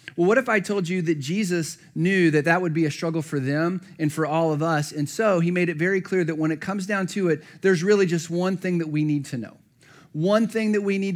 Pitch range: 135-165 Hz